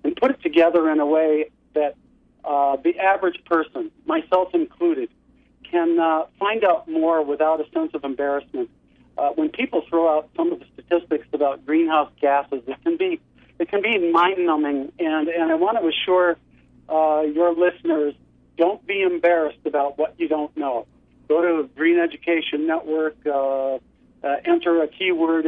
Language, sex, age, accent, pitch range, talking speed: English, male, 50-69, American, 150-175 Hz, 165 wpm